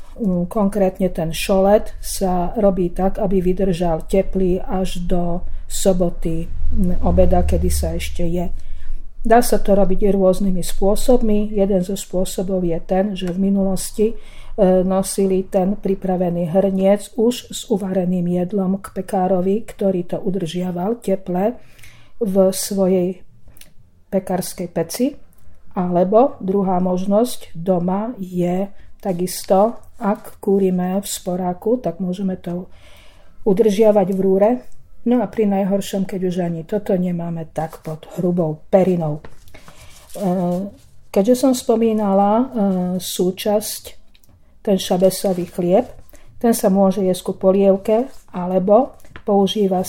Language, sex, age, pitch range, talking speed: Slovak, female, 50-69, 175-200 Hz, 110 wpm